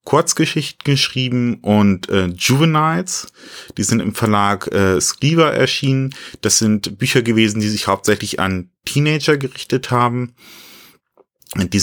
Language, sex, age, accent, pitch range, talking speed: German, male, 30-49, German, 100-125 Hz, 120 wpm